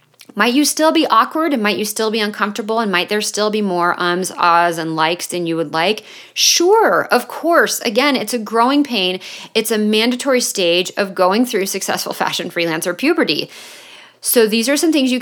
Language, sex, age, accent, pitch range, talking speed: English, female, 30-49, American, 175-230 Hz, 195 wpm